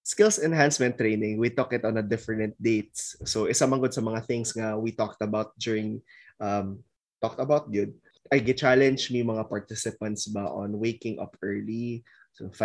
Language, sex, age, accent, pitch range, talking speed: Filipino, male, 20-39, native, 105-135 Hz, 175 wpm